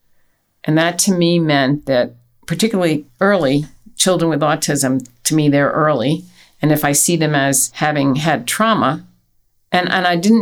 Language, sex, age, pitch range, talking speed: English, female, 50-69, 135-165 Hz, 160 wpm